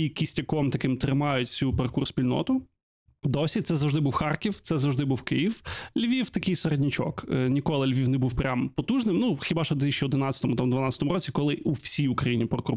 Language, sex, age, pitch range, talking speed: Ukrainian, male, 20-39, 135-165 Hz, 165 wpm